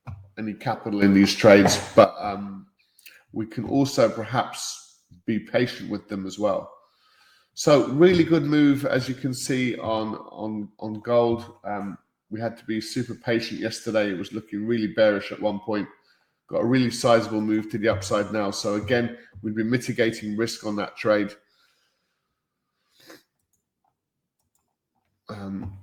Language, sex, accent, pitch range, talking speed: English, male, British, 105-130 Hz, 150 wpm